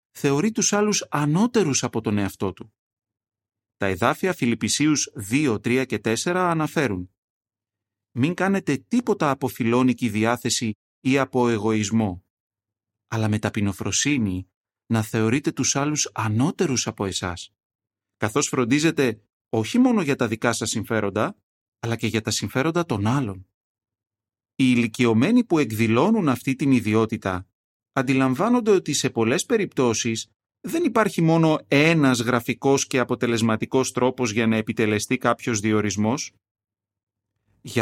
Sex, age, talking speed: male, 30-49, 120 wpm